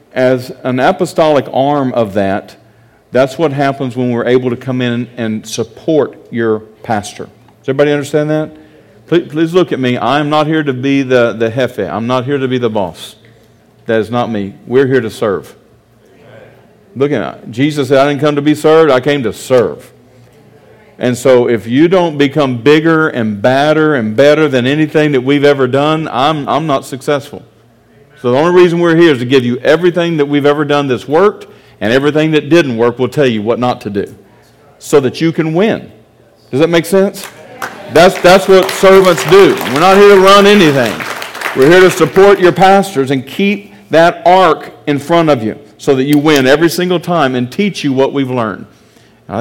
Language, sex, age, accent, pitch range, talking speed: English, male, 50-69, American, 125-165 Hz, 200 wpm